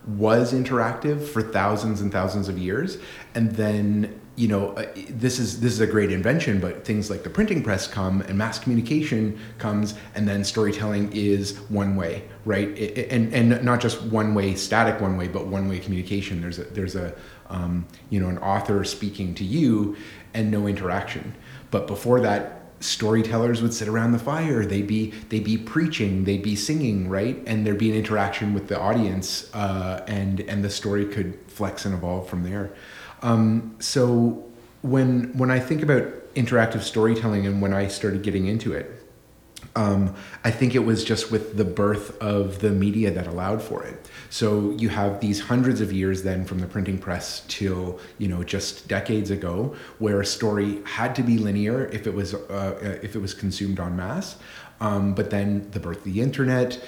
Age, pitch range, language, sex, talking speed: 30-49, 100-115 Hz, English, male, 190 wpm